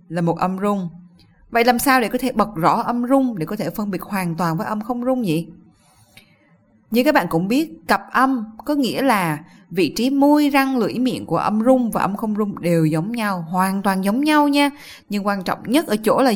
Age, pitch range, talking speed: 20-39, 185-250 Hz, 235 wpm